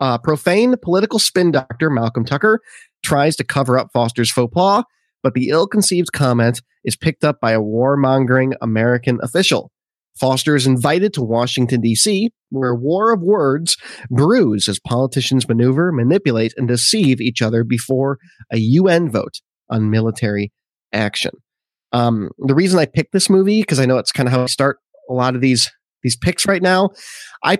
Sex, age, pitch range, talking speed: male, 30-49, 125-170 Hz, 170 wpm